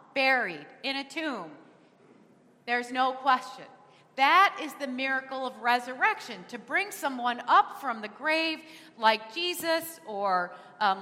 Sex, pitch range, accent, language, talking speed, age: female, 235-290 Hz, American, English, 130 wpm, 40-59